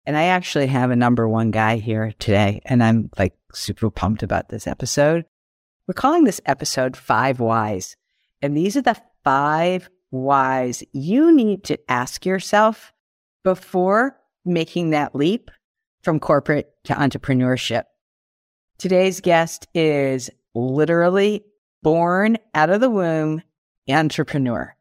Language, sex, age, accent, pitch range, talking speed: English, female, 50-69, American, 130-185 Hz, 130 wpm